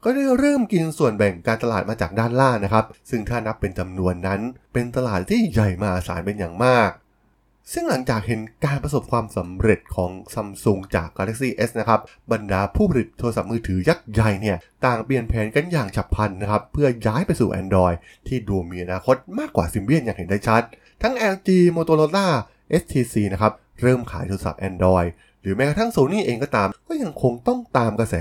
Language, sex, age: Thai, male, 20-39